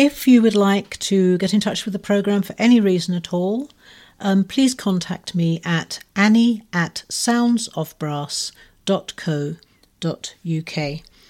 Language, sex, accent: English, female, British